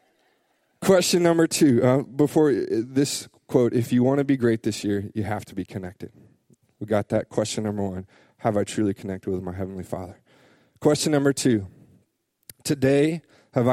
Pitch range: 105-125 Hz